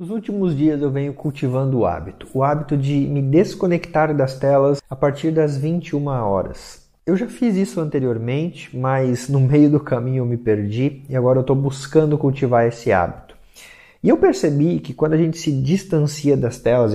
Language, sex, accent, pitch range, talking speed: Portuguese, male, Brazilian, 125-175 Hz, 185 wpm